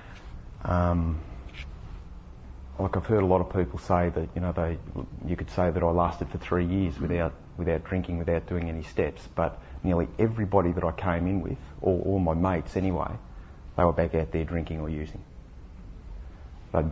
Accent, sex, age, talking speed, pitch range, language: Australian, male, 30-49, 180 wpm, 80-90 Hz, English